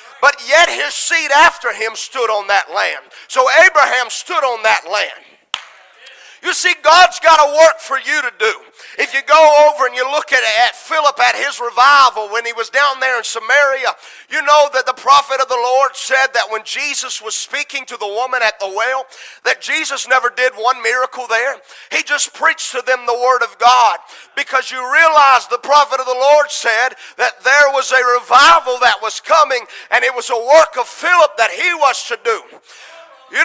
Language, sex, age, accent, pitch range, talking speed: English, male, 40-59, American, 245-295 Hz, 200 wpm